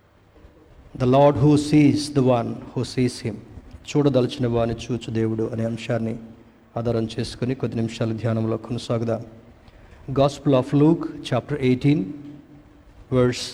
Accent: native